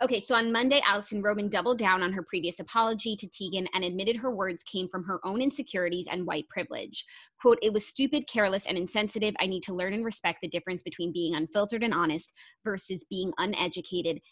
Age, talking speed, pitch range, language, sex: 20-39, 205 wpm, 180-220 Hz, English, female